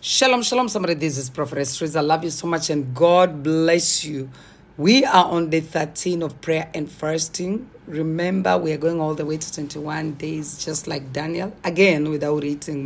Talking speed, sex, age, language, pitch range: 185 wpm, female, 40-59, English, 155-190 Hz